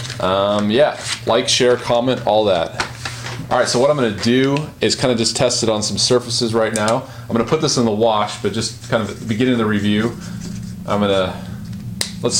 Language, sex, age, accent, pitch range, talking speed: English, male, 30-49, American, 105-125 Hz, 225 wpm